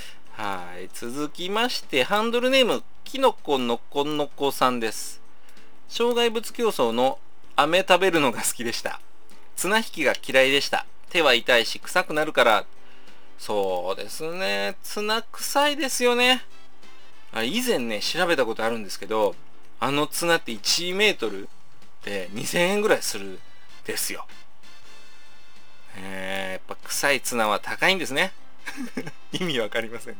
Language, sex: Japanese, male